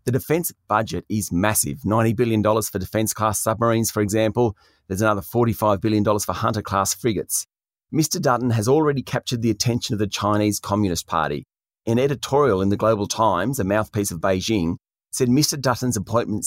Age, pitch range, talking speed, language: 30-49, 105-130 Hz, 165 wpm, English